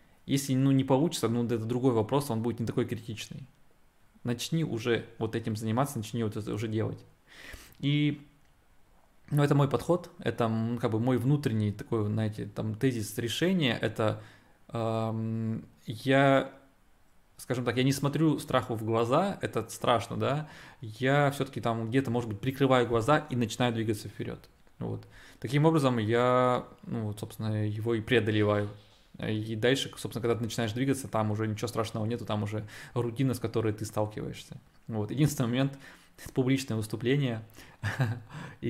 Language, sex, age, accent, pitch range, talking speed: Russian, male, 20-39, native, 110-135 Hz, 150 wpm